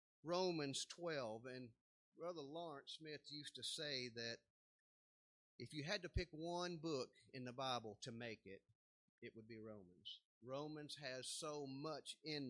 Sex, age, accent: male, 40-59, American